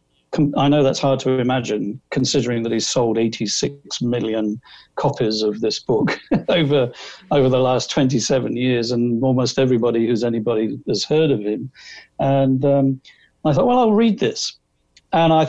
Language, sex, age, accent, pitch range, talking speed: English, male, 50-69, British, 115-145 Hz, 160 wpm